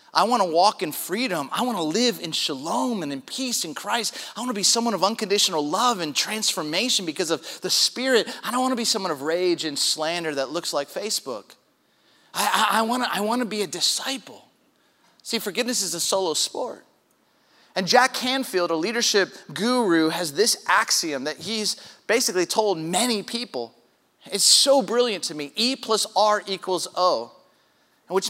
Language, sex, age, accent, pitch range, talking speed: English, male, 30-49, American, 175-245 Hz, 180 wpm